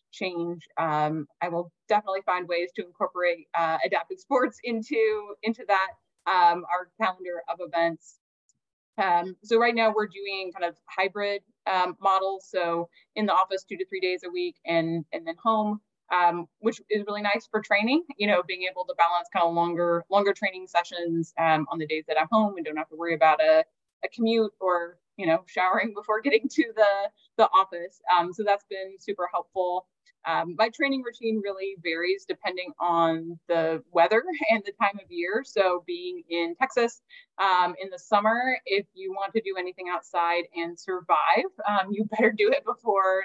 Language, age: English, 20-39